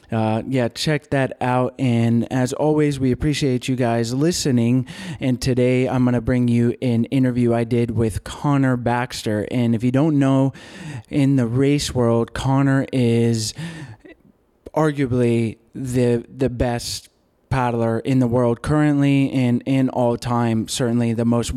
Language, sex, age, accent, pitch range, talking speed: English, male, 20-39, American, 115-135 Hz, 150 wpm